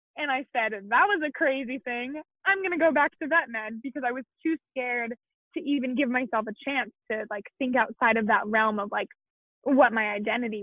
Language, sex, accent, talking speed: English, female, American, 220 wpm